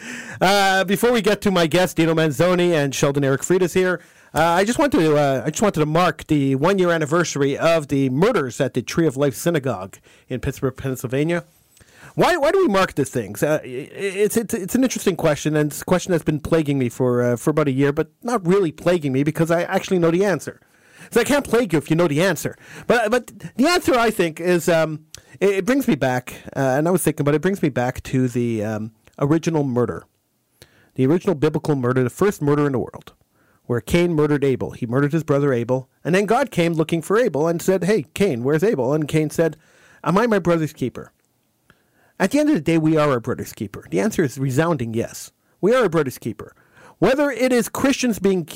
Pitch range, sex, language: 140-190 Hz, male, English